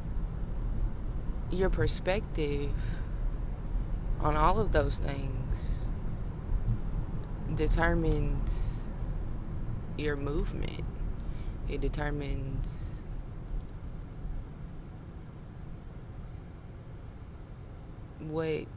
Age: 20-39